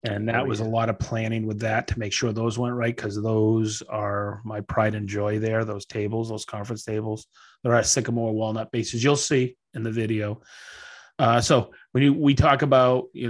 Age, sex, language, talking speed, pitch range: 30-49, male, English, 210 wpm, 110-130 Hz